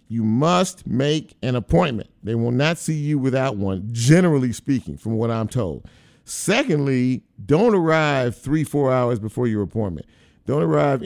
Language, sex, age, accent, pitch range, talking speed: English, male, 50-69, American, 115-155 Hz, 155 wpm